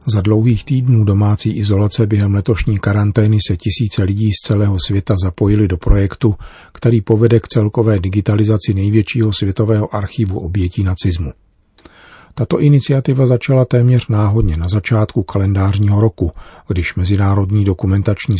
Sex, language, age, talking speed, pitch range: male, Czech, 40-59, 125 wpm, 95-115 Hz